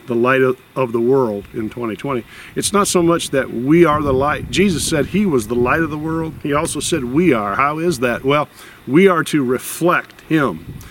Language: English